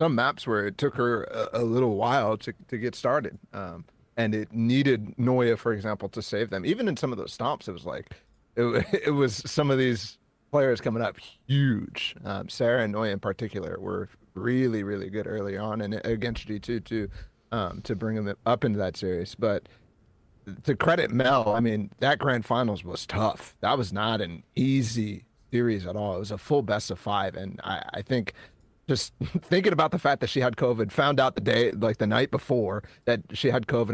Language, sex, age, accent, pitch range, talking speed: English, male, 30-49, American, 105-135 Hz, 205 wpm